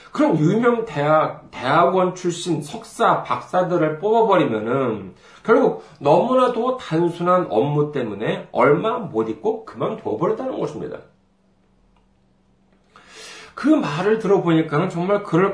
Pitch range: 150-215 Hz